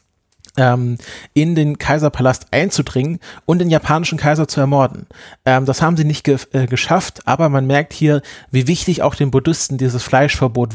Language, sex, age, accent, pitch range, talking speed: German, male, 30-49, German, 125-145 Hz, 145 wpm